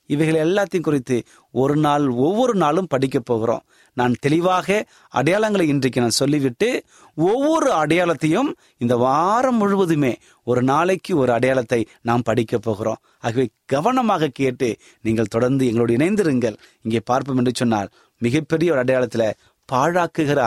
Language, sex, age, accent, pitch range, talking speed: Tamil, male, 30-49, native, 120-160 Hz, 125 wpm